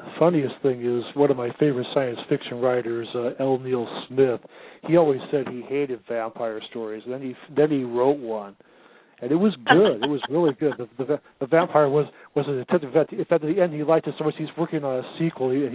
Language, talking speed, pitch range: English, 230 wpm, 125-150 Hz